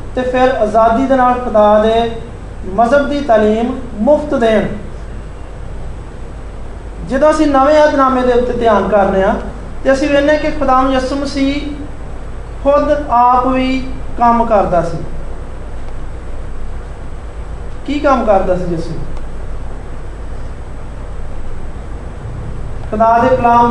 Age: 40-59